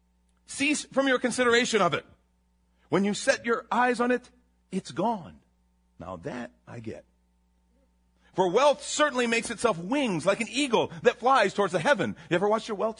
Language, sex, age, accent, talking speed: English, male, 40-59, American, 175 wpm